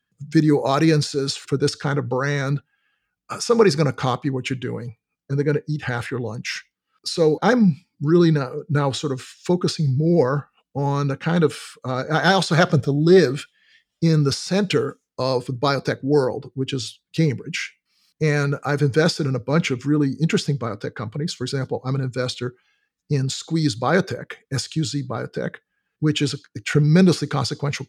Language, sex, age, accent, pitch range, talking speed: English, male, 50-69, American, 135-160 Hz, 170 wpm